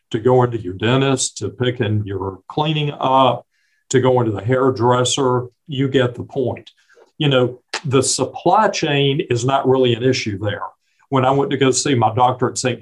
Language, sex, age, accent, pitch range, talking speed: English, male, 50-69, American, 115-140 Hz, 190 wpm